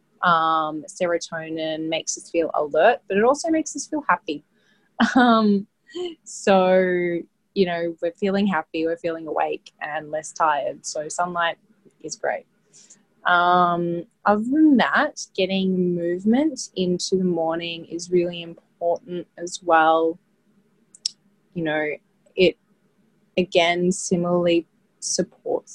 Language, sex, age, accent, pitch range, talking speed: English, female, 20-39, Australian, 165-205 Hz, 115 wpm